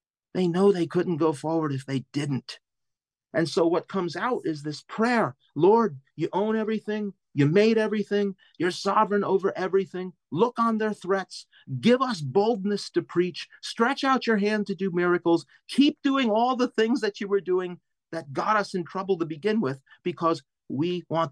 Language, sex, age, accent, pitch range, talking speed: English, male, 40-59, American, 120-180 Hz, 180 wpm